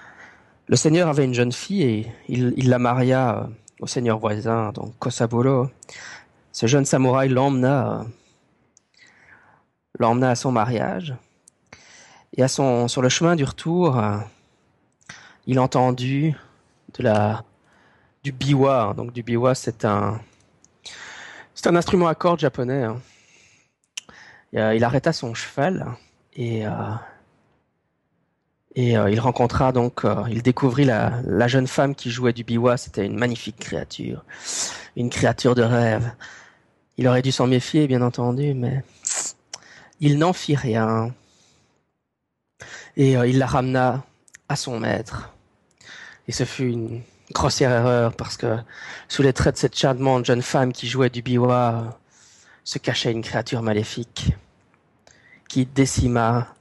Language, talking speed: French, 130 wpm